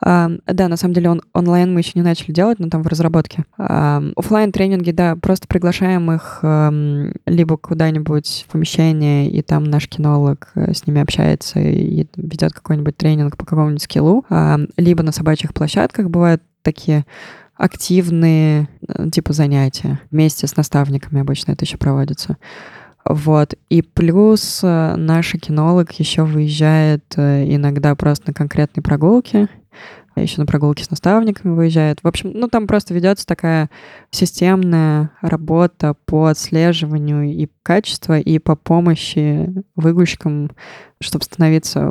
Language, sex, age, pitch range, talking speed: Russian, female, 20-39, 150-175 Hz, 130 wpm